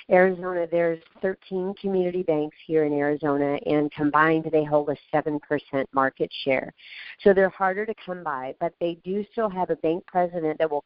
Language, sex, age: English, female, 50-69